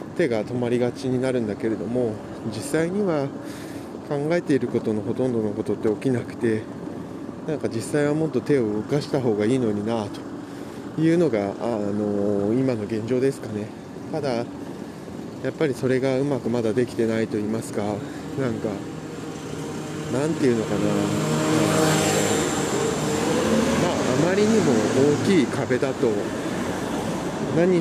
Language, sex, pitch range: Japanese, male, 110-140 Hz